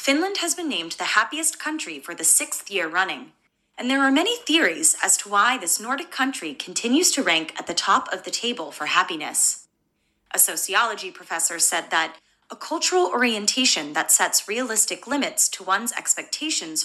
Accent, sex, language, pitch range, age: American, female, Japanese, 195-315 Hz, 20-39